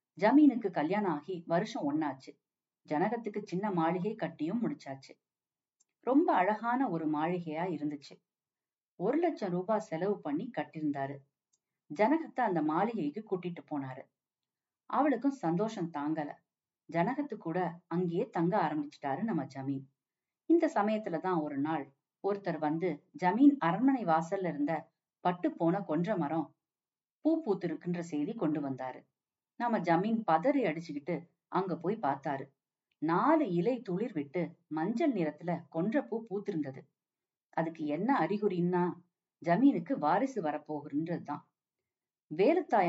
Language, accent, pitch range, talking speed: Tamil, native, 155-210 Hz, 105 wpm